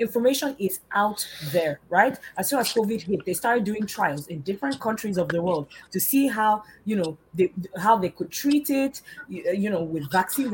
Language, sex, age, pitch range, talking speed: English, female, 20-39, 175-225 Hz, 195 wpm